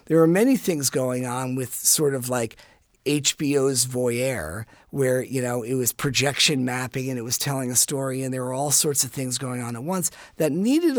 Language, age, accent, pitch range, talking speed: English, 50-69, American, 125-170 Hz, 205 wpm